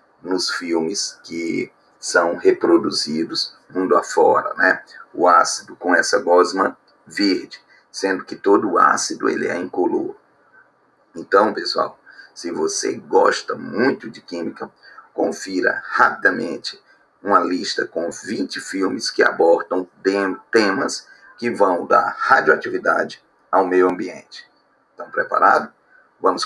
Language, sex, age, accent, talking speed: Portuguese, male, 40-59, Brazilian, 115 wpm